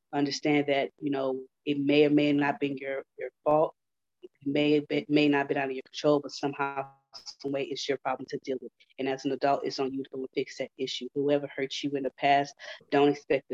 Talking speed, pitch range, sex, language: 230 wpm, 135-145 Hz, female, English